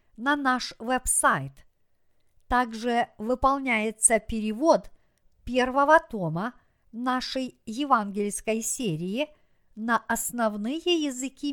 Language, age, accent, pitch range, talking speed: Russian, 50-69, native, 200-270 Hz, 75 wpm